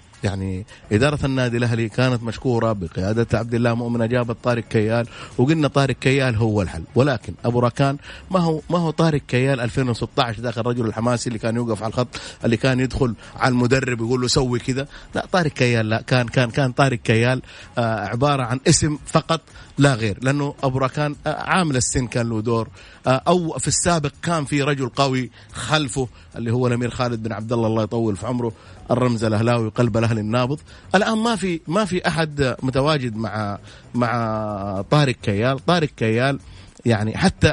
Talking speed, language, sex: 175 wpm, Arabic, male